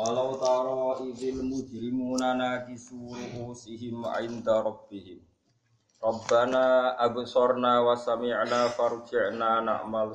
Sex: male